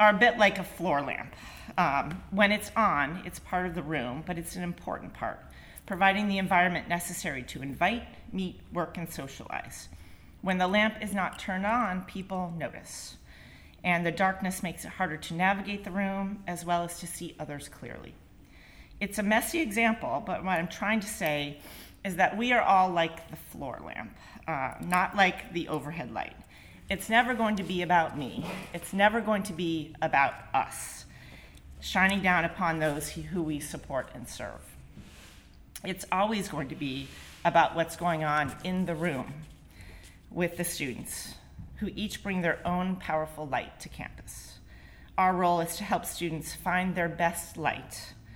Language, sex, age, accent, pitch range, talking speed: English, female, 40-59, American, 155-195 Hz, 170 wpm